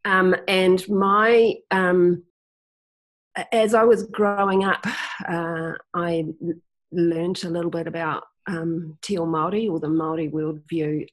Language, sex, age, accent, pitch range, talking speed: English, female, 40-59, Australian, 155-195 Hz, 125 wpm